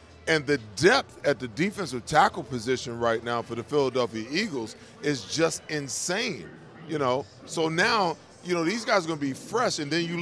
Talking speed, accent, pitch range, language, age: 195 wpm, American, 125-160 Hz, English, 40-59